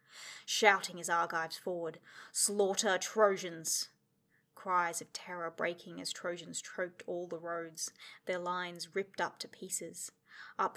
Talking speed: 130 wpm